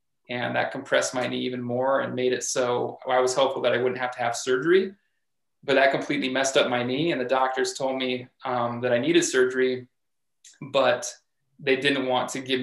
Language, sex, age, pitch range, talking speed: English, male, 20-39, 125-135 Hz, 215 wpm